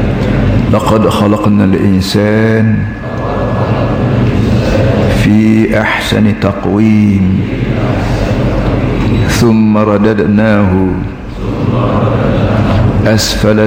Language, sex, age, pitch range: Malay, male, 50-69, 100-110 Hz